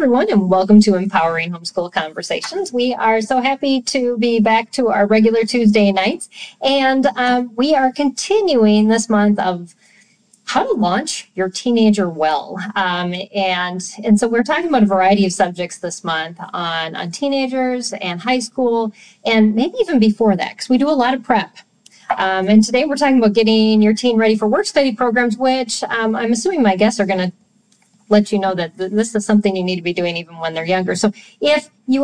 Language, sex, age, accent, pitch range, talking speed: English, female, 40-59, American, 190-235 Hz, 195 wpm